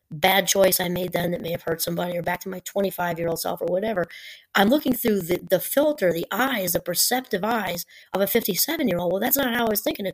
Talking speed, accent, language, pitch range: 260 wpm, American, English, 180-235 Hz